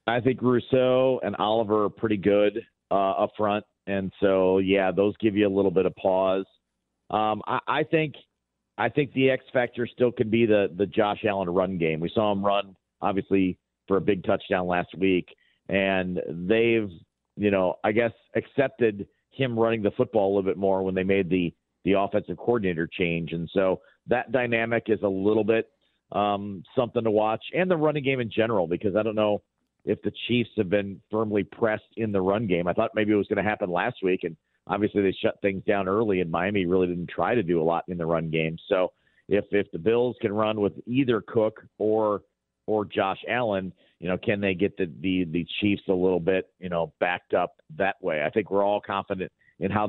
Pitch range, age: 95-110 Hz, 50-69